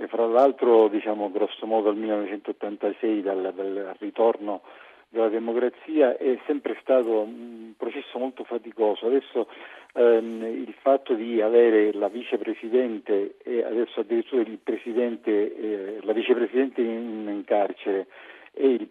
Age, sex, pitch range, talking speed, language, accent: 50-69, male, 115-150 Hz, 120 wpm, Italian, native